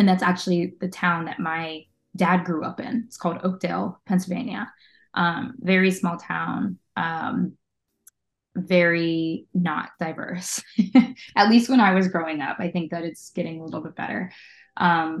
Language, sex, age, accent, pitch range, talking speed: English, female, 20-39, American, 165-190 Hz, 160 wpm